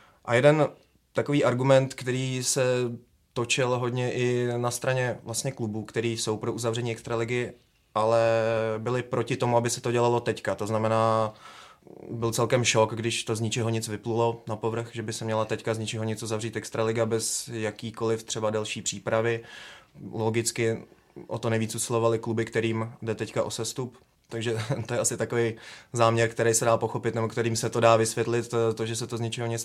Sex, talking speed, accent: male, 180 wpm, native